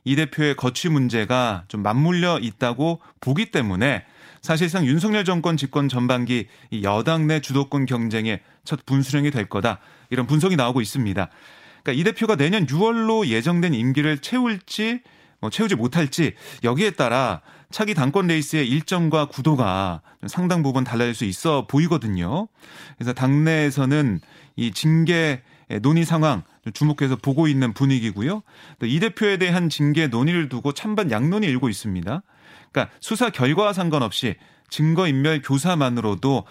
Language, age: Korean, 30-49